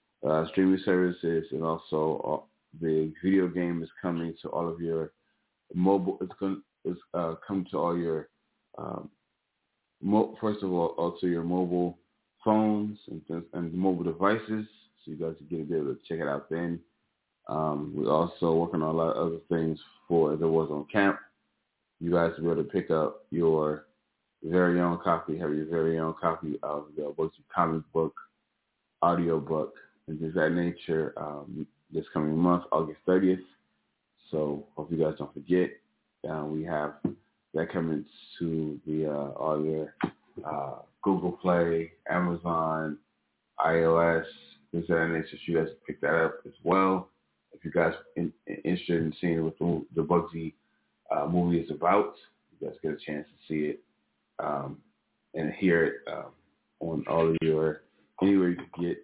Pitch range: 75-85 Hz